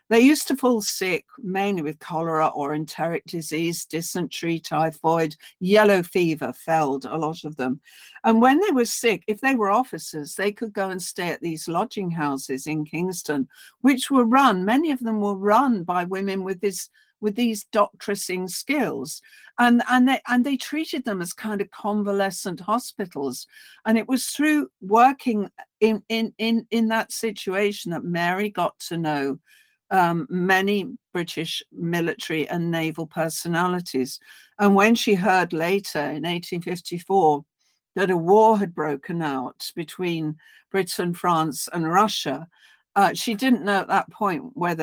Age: 60-79